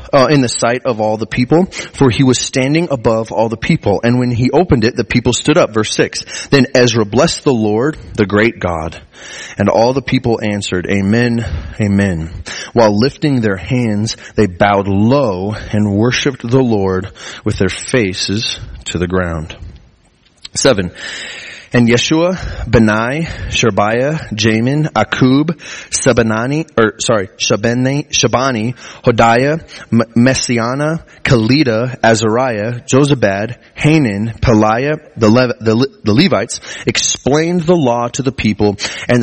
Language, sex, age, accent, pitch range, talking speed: English, male, 30-49, American, 105-130 Hz, 135 wpm